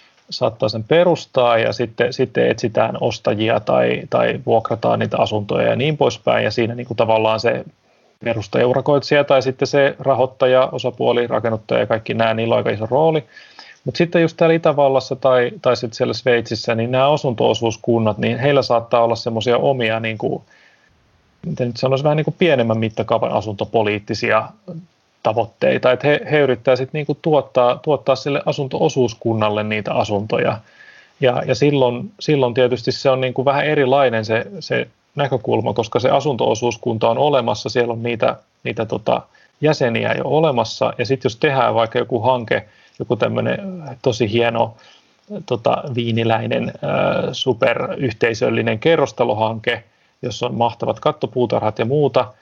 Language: Finnish